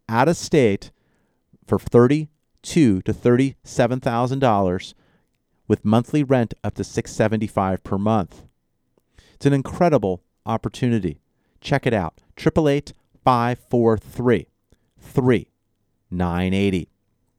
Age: 40-59